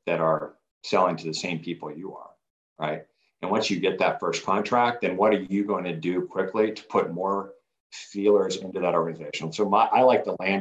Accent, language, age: American, English, 50-69